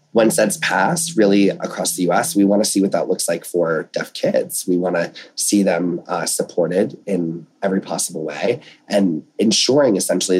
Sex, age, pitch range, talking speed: male, 30-49, 90-110 Hz, 185 wpm